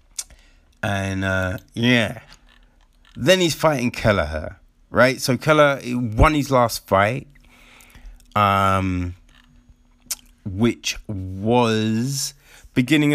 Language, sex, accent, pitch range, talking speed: English, male, British, 95-125 Hz, 85 wpm